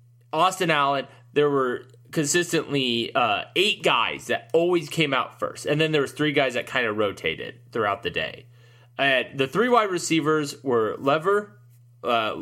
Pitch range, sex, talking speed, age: 120-160 Hz, male, 160 wpm, 20-39